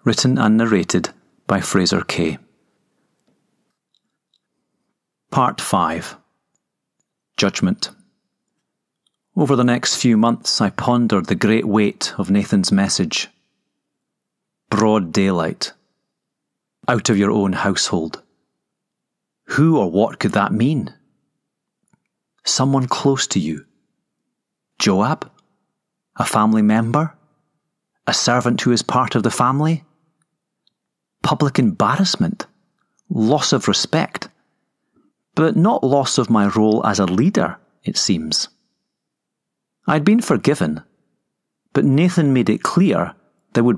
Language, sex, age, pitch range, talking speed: English, male, 30-49, 110-180 Hz, 105 wpm